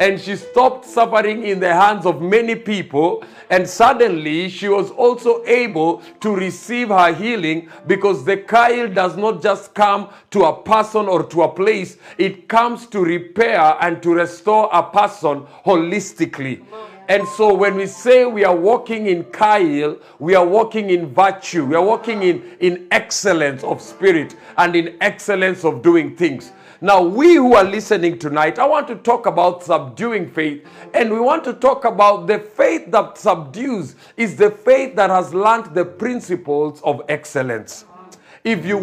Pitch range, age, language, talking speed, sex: 175-230 Hz, 50-69, English, 165 wpm, male